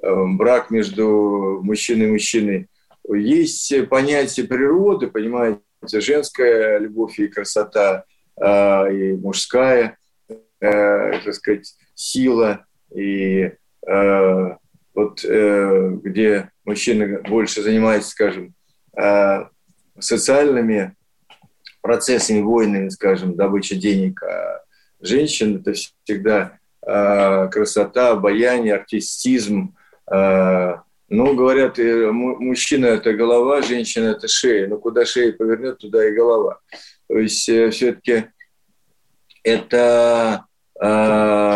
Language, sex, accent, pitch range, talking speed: Russian, male, native, 105-130 Hz, 85 wpm